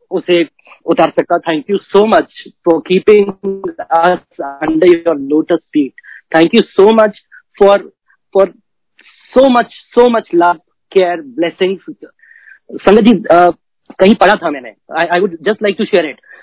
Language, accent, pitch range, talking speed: Hindi, native, 175-225 Hz, 130 wpm